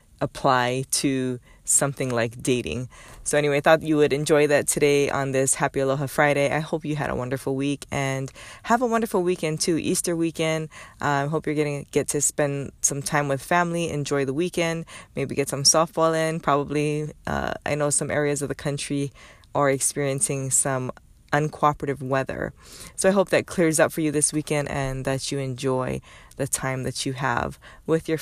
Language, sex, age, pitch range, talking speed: English, female, 20-39, 135-160 Hz, 190 wpm